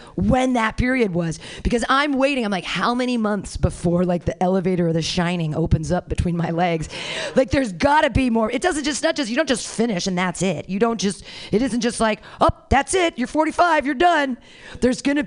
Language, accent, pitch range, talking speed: English, American, 170-265 Hz, 230 wpm